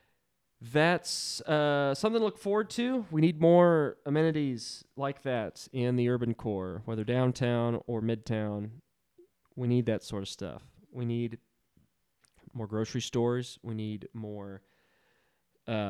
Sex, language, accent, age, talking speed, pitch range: male, English, American, 30-49, 130 wpm, 110-145 Hz